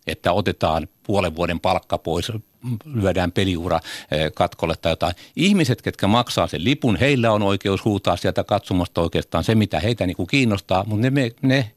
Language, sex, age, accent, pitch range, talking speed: Finnish, male, 60-79, native, 90-110 Hz, 160 wpm